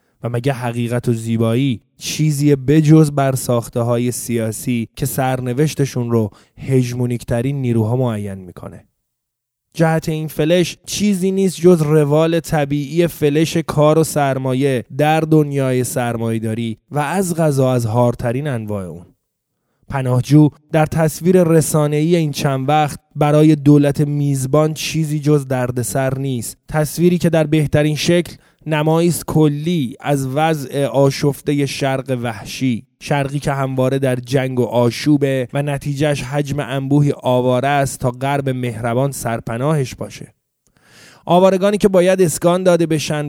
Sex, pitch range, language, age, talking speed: male, 130-160 Hz, Persian, 20-39, 125 wpm